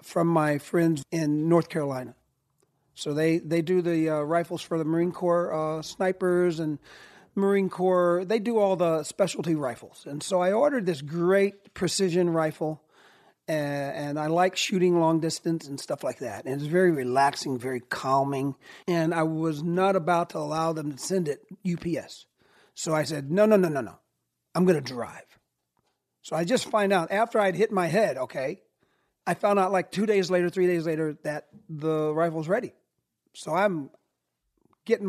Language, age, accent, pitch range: English, 40-59, American, 155-185 Hz